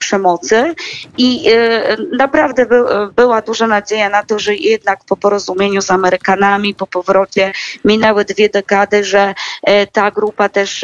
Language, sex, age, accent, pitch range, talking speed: Polish, female, 20-39, native, 190-210 Hz, 125 wpm